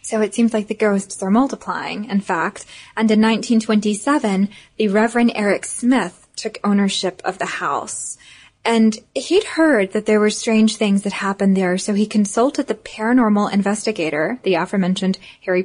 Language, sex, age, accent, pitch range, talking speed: English, female, 10-29, American, 195-235 Hz, 160 wpm